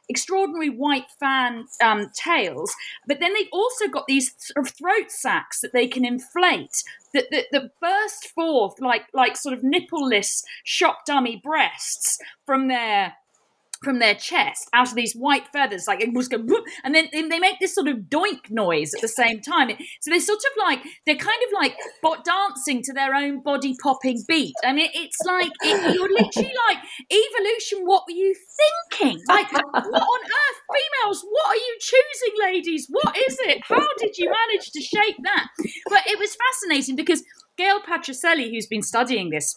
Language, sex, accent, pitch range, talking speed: English, female, British, 250-380 Hz, 175 wpm